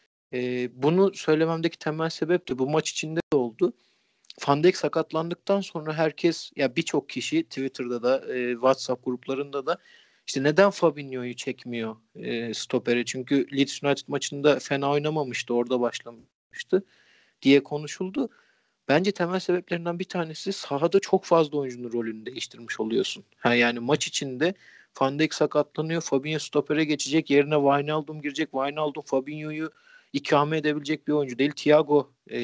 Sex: male